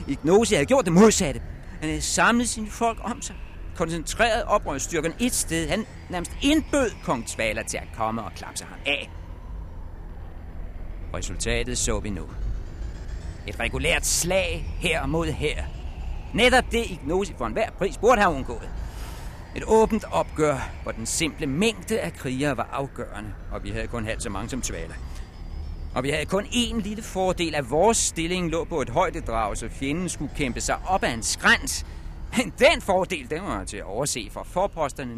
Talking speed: 170 wpm